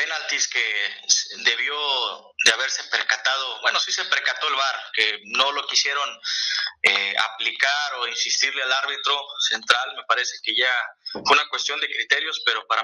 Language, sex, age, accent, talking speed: Spanish, male, 30-49, Mexican, 160 wpm